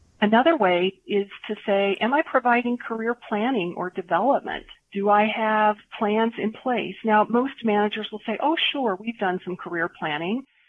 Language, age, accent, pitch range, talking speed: English, 40-59, American, 175-215 Hz, 170 wpm